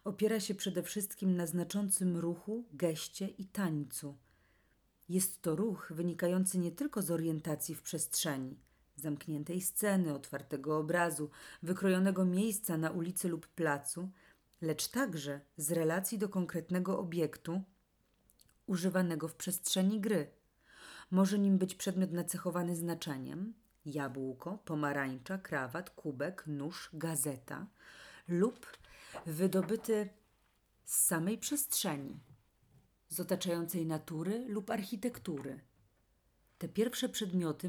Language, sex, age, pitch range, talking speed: Polish, female, 40-59, 155-190 Hz, 105 wpm